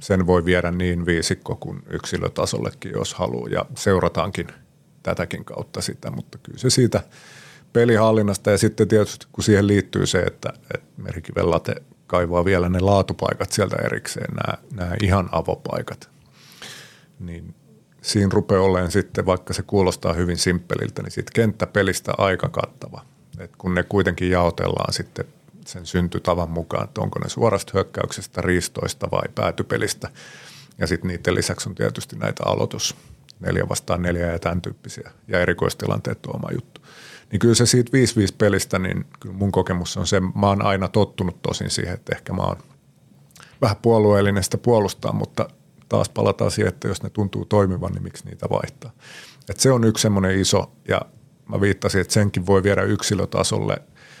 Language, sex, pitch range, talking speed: Finnish, male, 90-105 Hz, 160 wpm